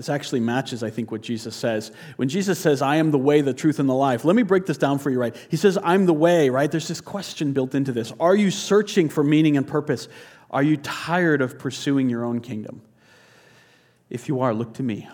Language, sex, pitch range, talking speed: English, male, 115-140 Hz, 240 wpm